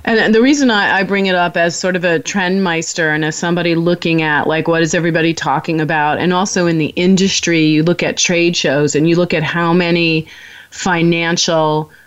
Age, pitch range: 30-49, 150-180 Hz